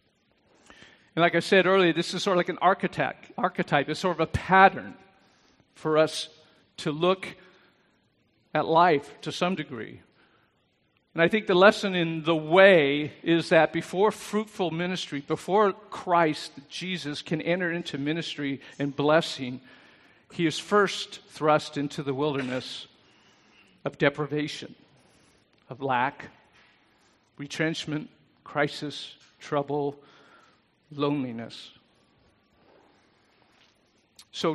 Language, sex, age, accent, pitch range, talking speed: English, male, 50-69, American, 145-180 Hz, 115 wpm